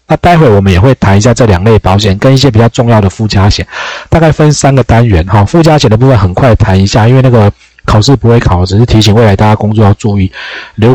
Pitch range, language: 95-140 Hz, Chinese